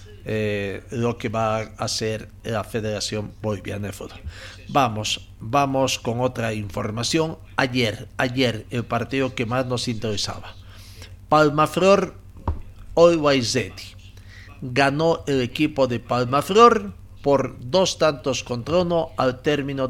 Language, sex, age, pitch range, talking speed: Spanish, male, 50-69, 100-150 Hz, 120 wpm